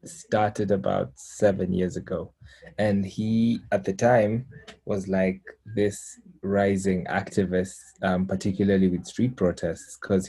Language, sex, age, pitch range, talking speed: English, male, 20-39, 95-110 Hz, 120 wpm